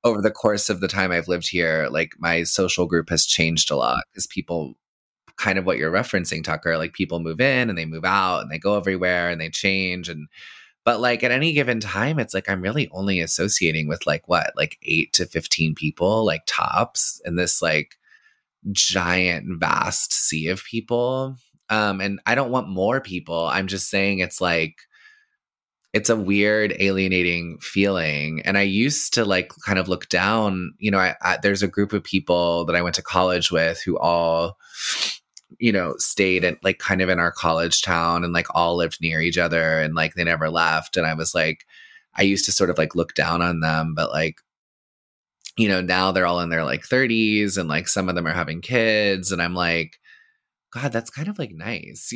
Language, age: English, 20-39